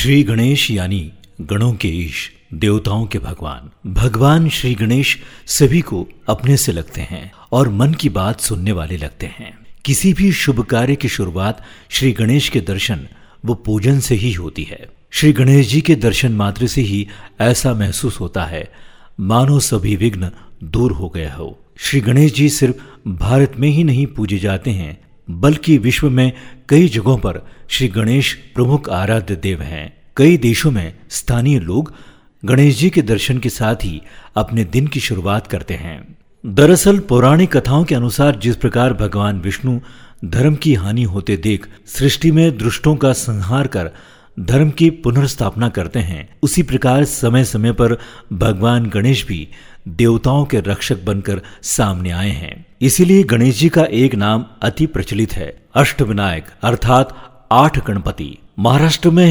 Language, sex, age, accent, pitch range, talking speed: Hindi, male, 50-69, native, 100-135 Hz, 160 wpm